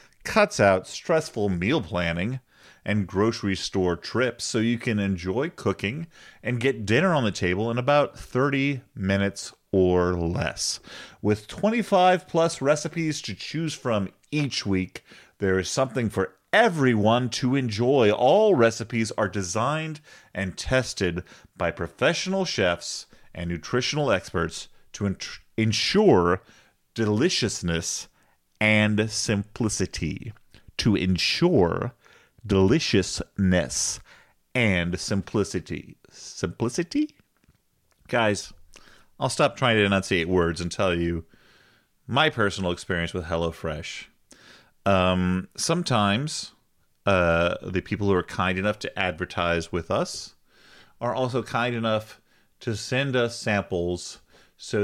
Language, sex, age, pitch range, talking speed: English, male, 30-49, 90-125 Hz, 115 wpm